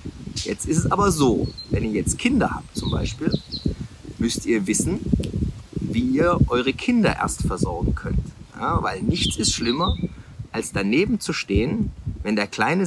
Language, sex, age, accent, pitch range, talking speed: German, male, 40-59, German, 110-170 Hz, 160 wpm